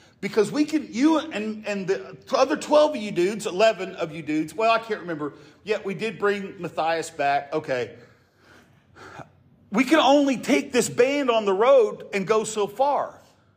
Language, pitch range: English, 140-225 Hz